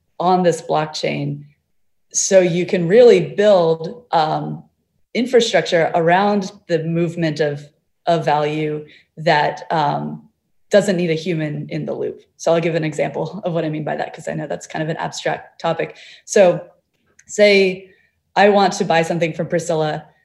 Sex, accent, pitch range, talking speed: female, American, 155-200 Hz, 160 wpm